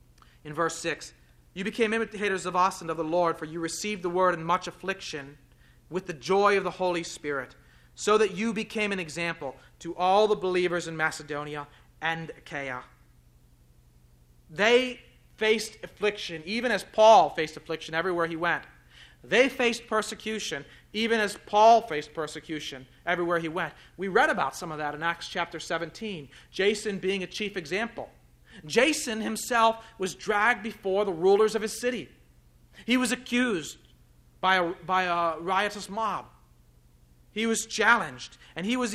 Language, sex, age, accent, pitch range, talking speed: English, male, 40-59, American, 155-210 Hz, 155 wpm